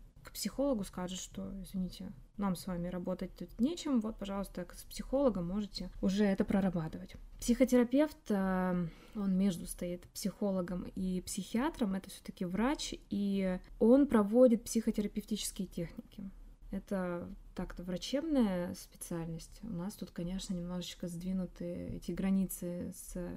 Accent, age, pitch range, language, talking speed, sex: native, 20-39, 180-225 Hz, Russian, 120 wpm, female